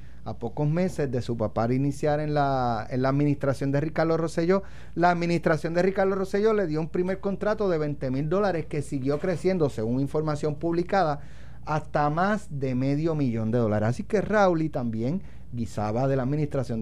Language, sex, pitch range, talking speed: Spanish, male, 130-180 Hz, 180 wpm